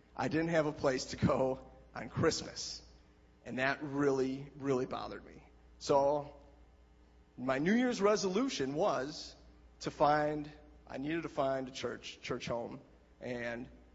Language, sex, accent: English, male, American